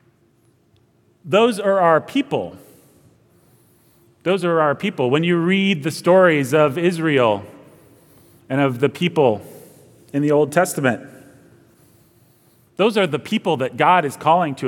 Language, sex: English, male